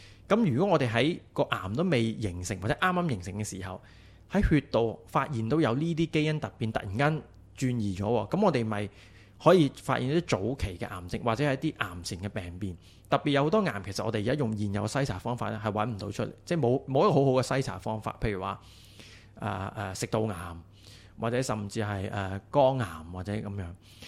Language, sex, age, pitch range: English, male, 20-39, 100-130 Hz